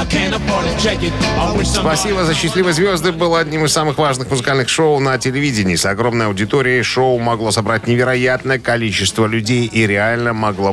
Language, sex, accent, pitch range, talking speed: Russian, male, native, 100-130 Hz, 140 wpm